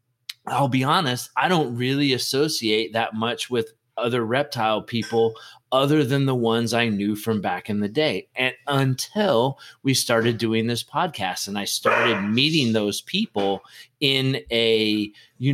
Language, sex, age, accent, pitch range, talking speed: English, male, 30-49, American, 110-135 Hz, 155 wpm